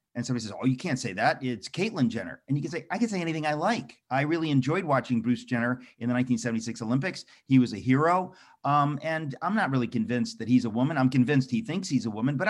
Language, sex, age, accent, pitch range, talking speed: English, male, 40-59, American, 120-150 Hz, 255 wpm